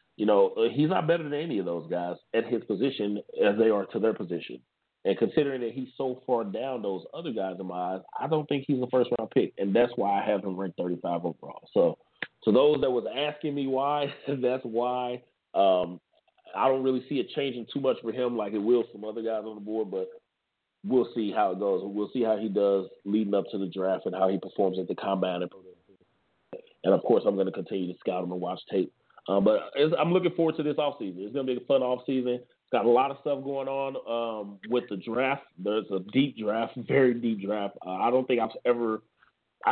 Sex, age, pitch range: male, 30-49, 100-125 Hz